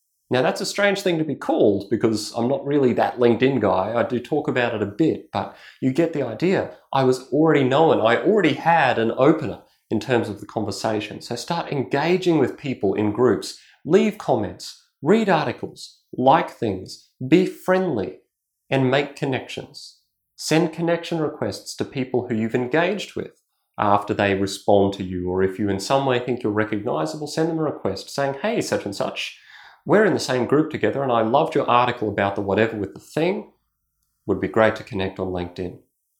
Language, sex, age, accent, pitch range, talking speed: English, male, 30-49, Australian, 100-145 Hz, 190 wpm